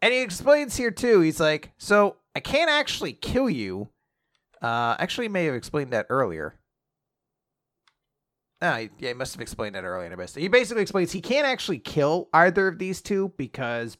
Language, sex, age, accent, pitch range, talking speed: English, male, 30-49, American, 105-160 Hz, 185 wpm